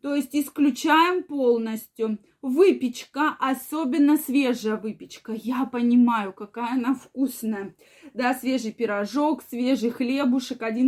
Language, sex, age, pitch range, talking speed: Russian, female, 20-39, 225-285 Hz, 105 wpm